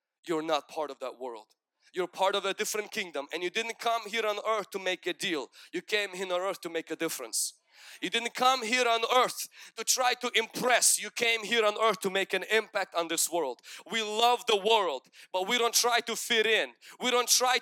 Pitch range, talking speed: 145-225 Hz, 230 wpm